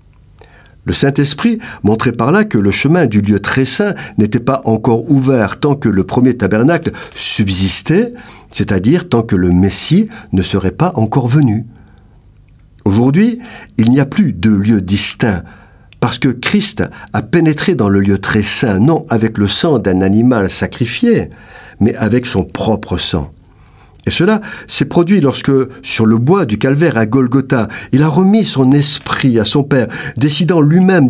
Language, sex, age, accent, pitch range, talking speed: French, male, 50-69, French, 100-145 Hz, 160 wpm